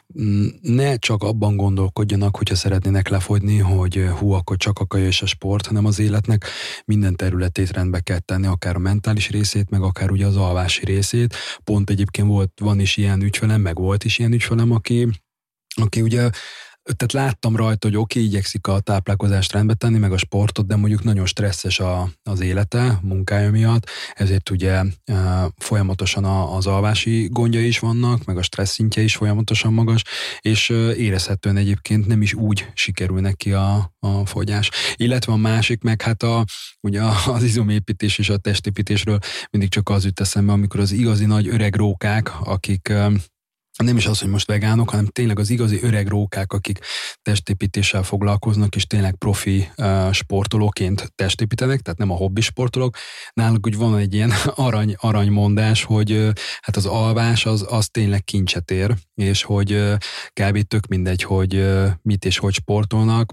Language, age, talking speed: Hungarian, 30-49, 165 wpm